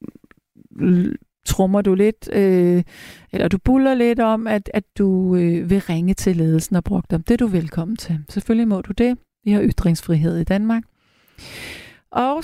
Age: 30-49